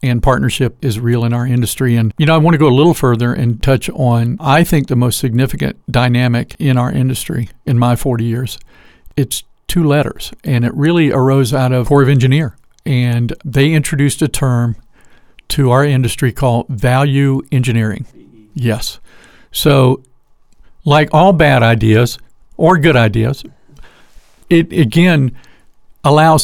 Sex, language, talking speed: male, English, 155 wpm